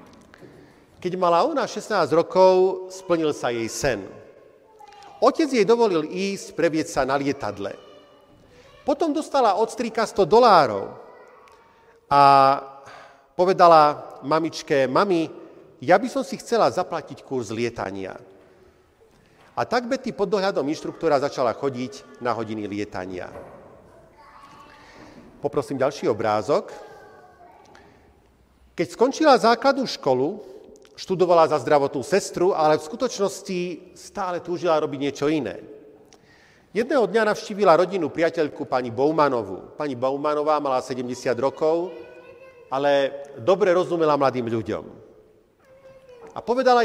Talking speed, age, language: 110 wpm, 40-59, Slovak